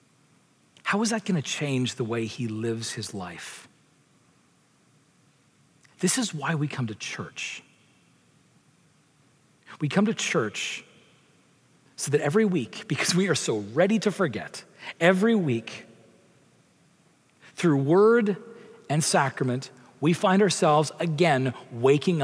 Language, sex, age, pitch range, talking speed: English, male, 40-59, 155-230 Hz, 120 wpm